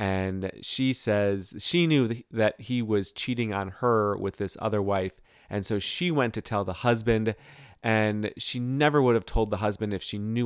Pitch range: 95-120 Hz